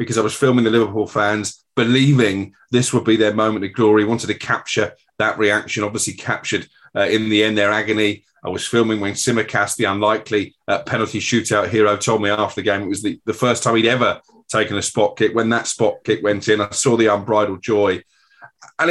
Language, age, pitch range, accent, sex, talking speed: English, 30-49, 110-135 Hz, British, male, 215 wpm